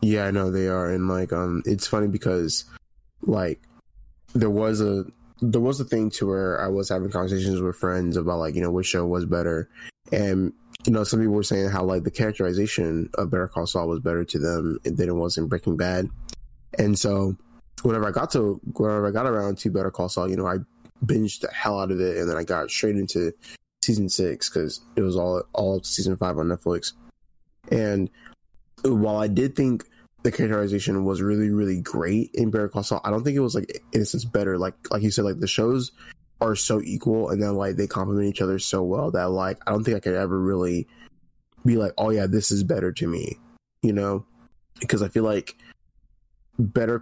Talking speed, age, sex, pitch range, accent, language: 215 wpm, 10-29, male, 90-110 Hz, American, English